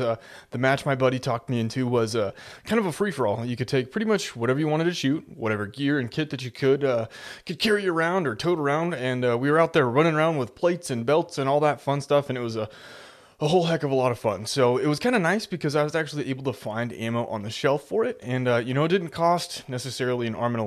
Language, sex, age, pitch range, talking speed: English, male, 20-39, 125-170 Hz, 285 wpm